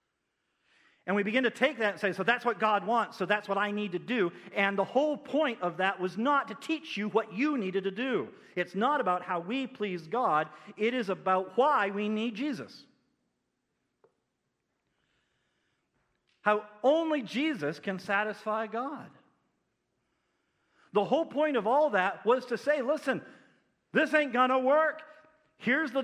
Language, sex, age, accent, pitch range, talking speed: English, male, 50-69, American, 180-245 Hz, 170 wpm